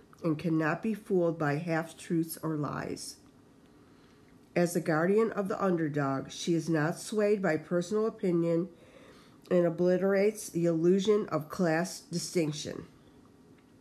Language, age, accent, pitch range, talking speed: English, 50-69, American, 155-185 Hz, 120 wpm